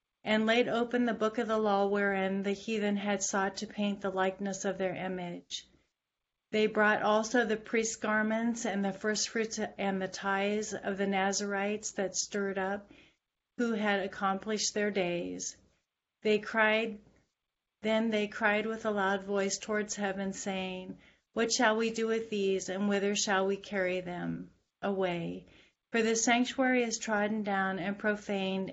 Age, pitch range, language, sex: 40-59, 195-220 Hz, English, female